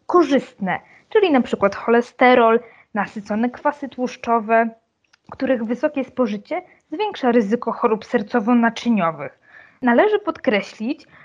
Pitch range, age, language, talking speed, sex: 225-275 Hz, 20-39, Polish, 90 wpm, female